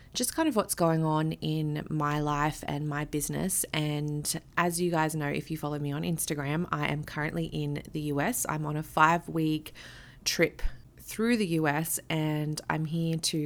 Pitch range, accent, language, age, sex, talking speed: 145-170 Hz, Australian, English, 20-39, female, 185 wpm